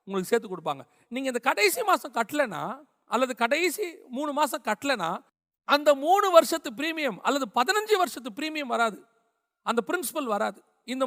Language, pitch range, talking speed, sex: Tamil, 185-275 Hz, 105 wpm, male